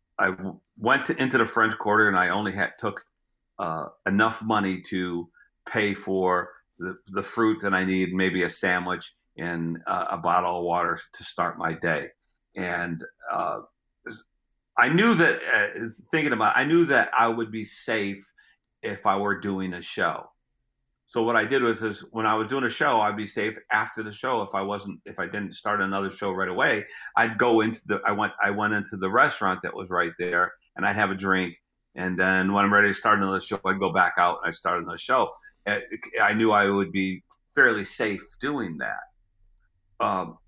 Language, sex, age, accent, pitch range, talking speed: English, male, 50-69, American, 95-110 Hz, 200 wpm